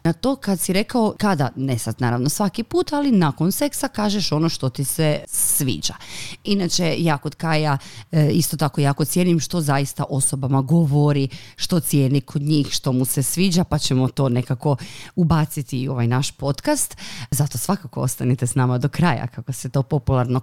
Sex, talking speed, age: female, 175 wpm, 30-49